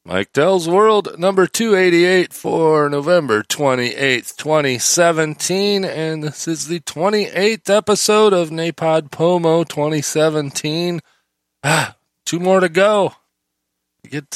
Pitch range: 115-160 Hz